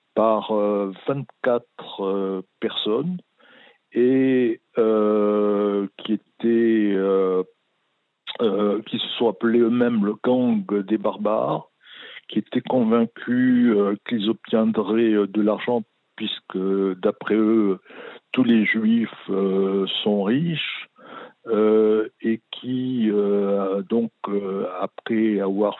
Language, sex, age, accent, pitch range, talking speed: French, male, 60-79, French, 100-115 Hz, 105 wpm